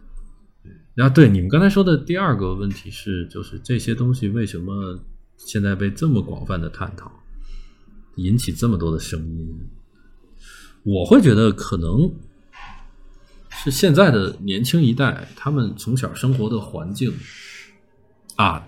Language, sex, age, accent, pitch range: Chinese, male, 20-39, native, 95-135 Hz